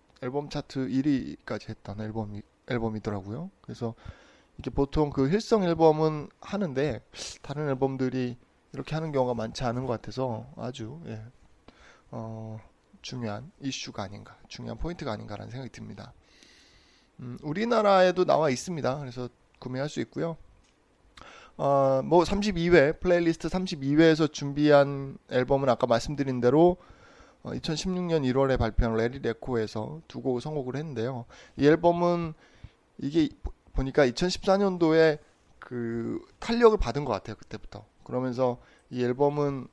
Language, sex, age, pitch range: Korean, male, 20-39, 115-160 Hz